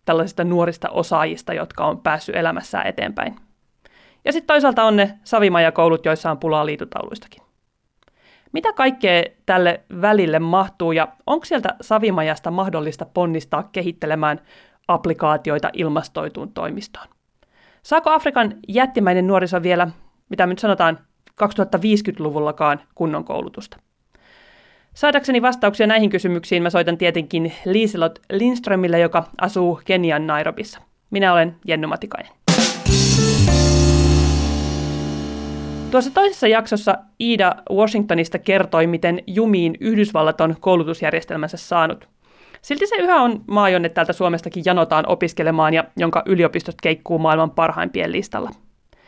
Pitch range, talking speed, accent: 160-210 Hz, 110 wpm, native